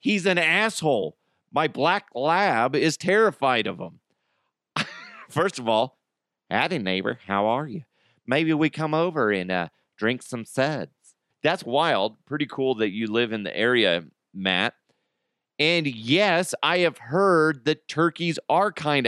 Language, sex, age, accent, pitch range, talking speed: English, male, 40-59, American, 125-160 Hz, 150 wpm